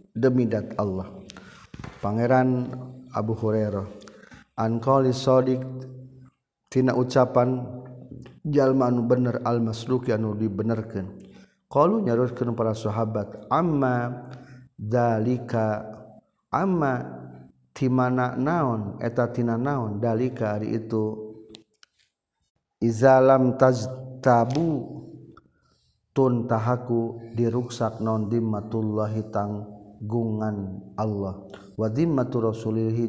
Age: 50-69